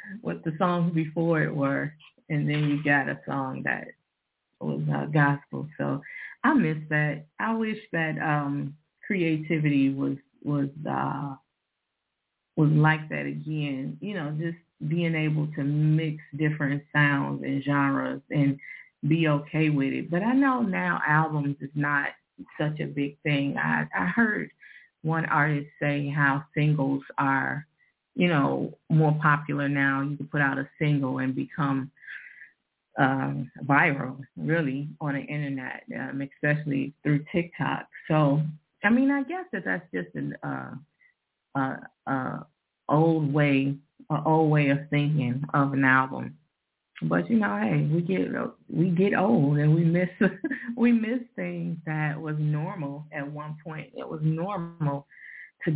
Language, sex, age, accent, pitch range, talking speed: English, female, 30-49, American, 140-165 Hz, 150 wpm